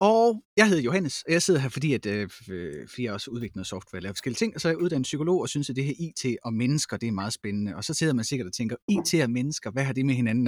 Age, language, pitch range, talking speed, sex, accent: 30-49, Danish, 120-180 Hz, 300 wpm, male, native